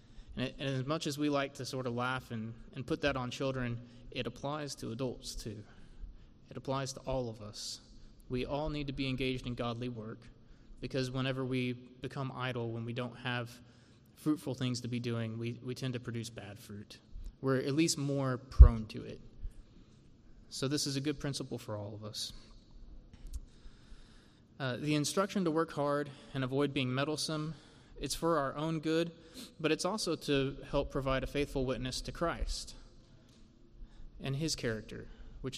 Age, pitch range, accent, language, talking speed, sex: 20-39, 115-140 Hz, American, English, 175 wpm, male